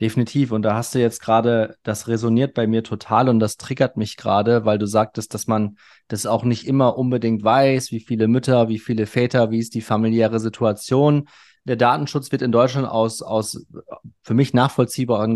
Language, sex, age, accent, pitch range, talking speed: German, male, 30-49, German, 110-130 Hz, 190 wpm